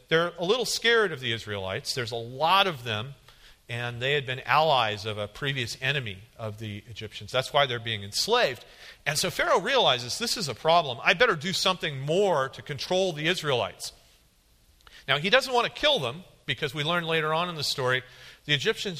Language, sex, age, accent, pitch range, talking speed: English, male, 40-59, American, 120-165 Hz, 200 wpm